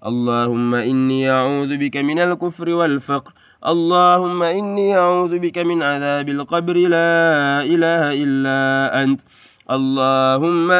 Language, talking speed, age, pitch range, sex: Indonesian, 105 wpm, 20-39, 135-175 Hz, male